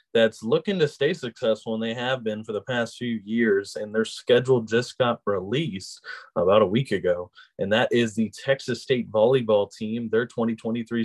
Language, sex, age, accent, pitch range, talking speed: English, male, 20-39, American, 110-135 Hz, 185 wpm